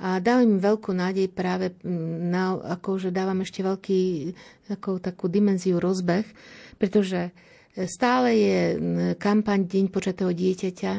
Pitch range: 175-195 Hz